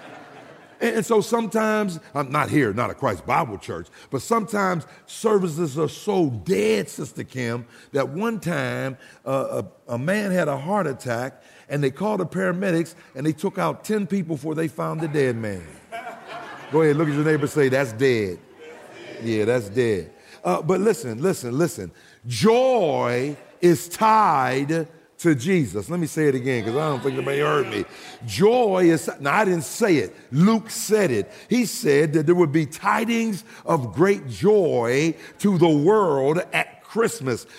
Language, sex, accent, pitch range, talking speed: English, male, American, 155-225 Hz, 170 wpm